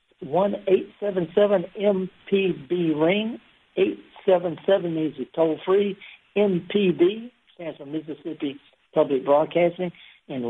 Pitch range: 155-200 Hz